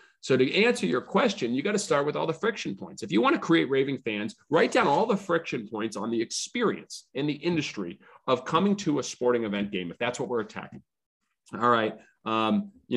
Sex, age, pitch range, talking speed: male, 30-49, 110-165 Hz, 225 wpm